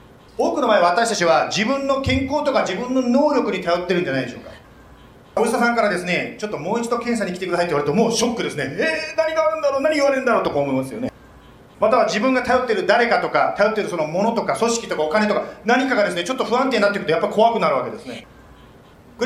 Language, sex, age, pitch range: Japanese, male, 40-59, 200-275 Hz